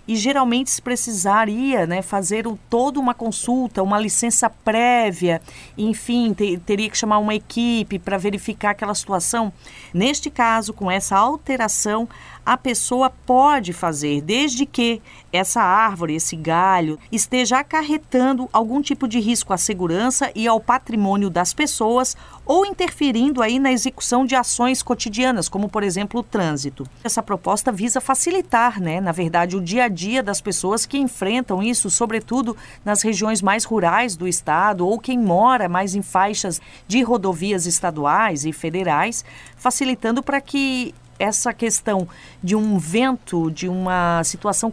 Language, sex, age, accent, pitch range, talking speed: Portuguese, female, 40-59, Brazilian, 195-250 Hz, 145 wpm